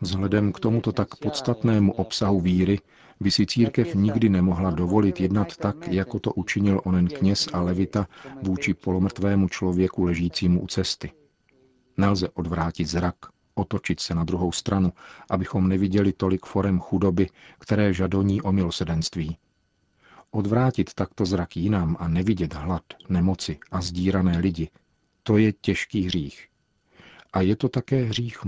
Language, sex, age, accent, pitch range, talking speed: Czech, male, 40-59, native, 90-105 Hz, 135 wpm